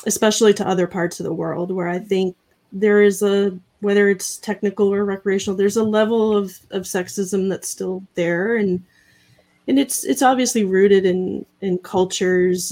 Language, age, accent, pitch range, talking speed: English, 30-49, American, 170-200 Hz, 170 wpm